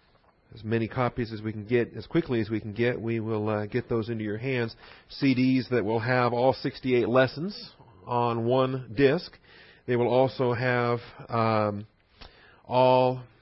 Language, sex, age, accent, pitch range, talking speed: English, male, 40-59, American, 115-130 Hz, 165 wpm